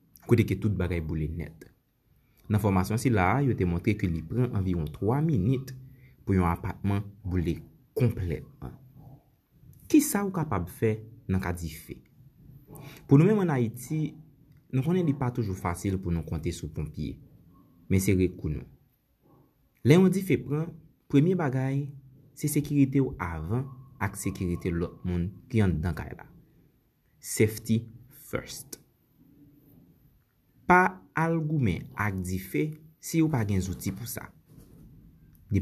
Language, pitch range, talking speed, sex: English, 90-140 Hz, 140 wpm, male